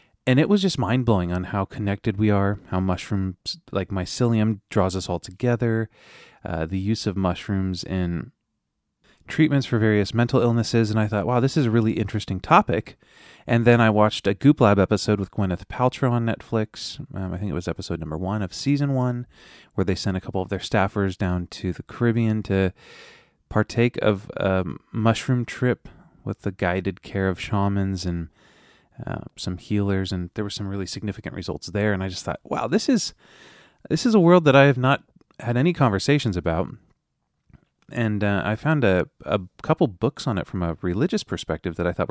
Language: English